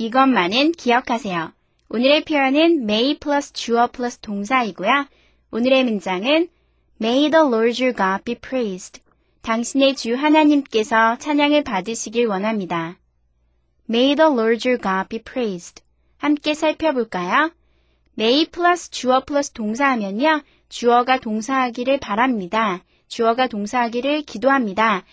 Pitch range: 225-290 Hz